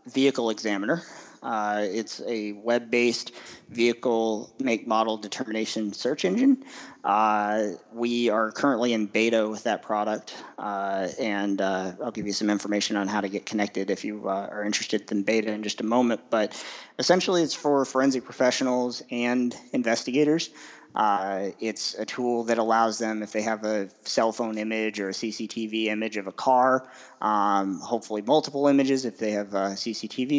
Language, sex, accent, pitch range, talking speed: English, male, American, 100-115 Hz, 165 wpm